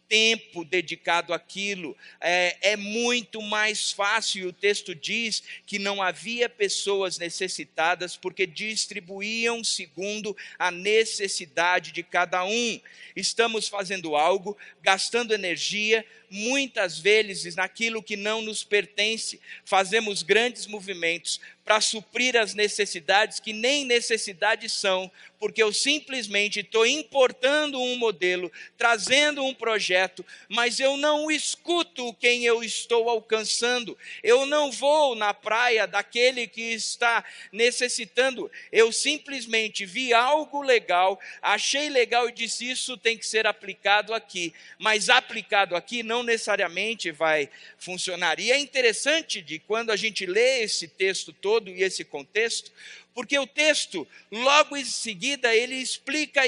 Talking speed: 125 wpm